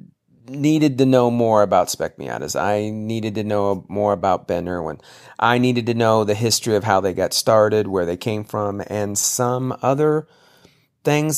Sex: male